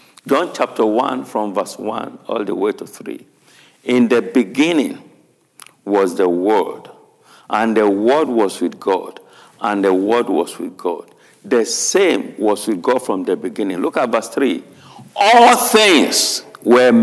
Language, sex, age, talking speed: English, male, 60-79, 155 wpm